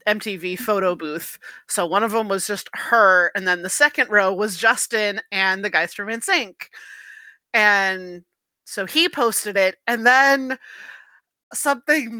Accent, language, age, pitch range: American, English, 30-49, 210-270 Hz